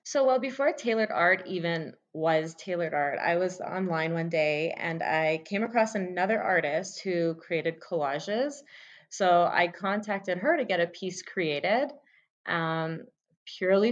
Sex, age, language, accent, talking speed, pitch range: female, 20-39, English, American, 145 wpm, 165-205 Hz